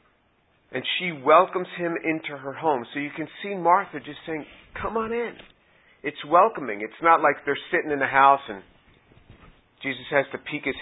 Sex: male